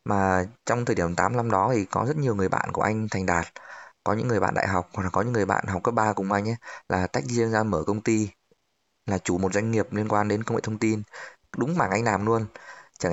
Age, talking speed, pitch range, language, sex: 20-39, 275 wpm, 100-125 Hz, Vietnamese, male